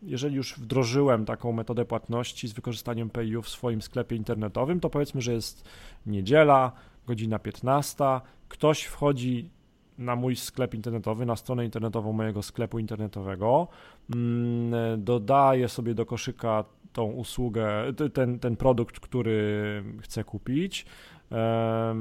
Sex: male